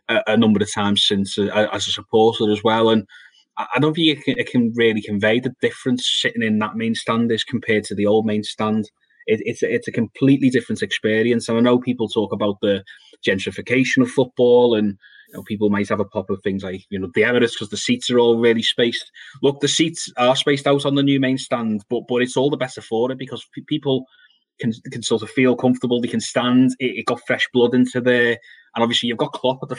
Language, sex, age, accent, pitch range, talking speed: English, male, 20-39, British, 110-130 Hz, 235 wpm